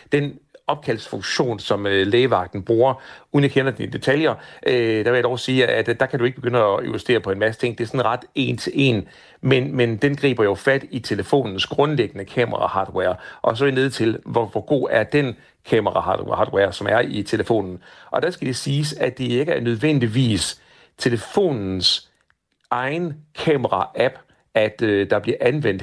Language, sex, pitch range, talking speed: Danish, male, 110-140 Hz, 175 wpm